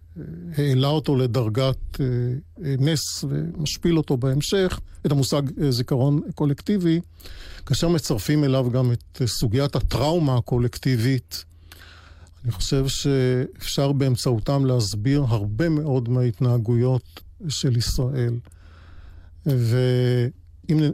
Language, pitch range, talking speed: Hebrew, 120-145 Hz, 85 wpm